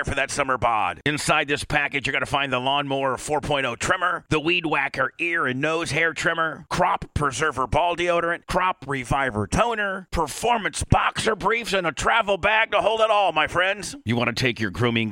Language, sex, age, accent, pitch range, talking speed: English, male, 40-59, American, 125-165 Hz, 195 wpm